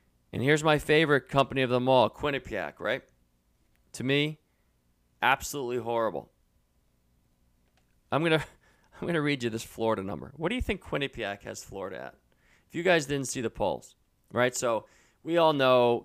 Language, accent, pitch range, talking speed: English, American, 85-140 Hz, 160 wpm